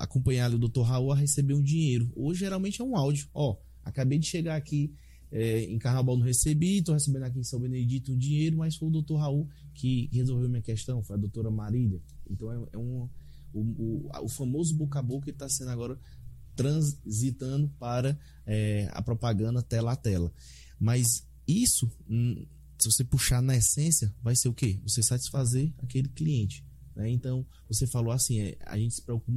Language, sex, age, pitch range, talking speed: Portuguese, male, 20-39, 110-135 Hz, 190 wpm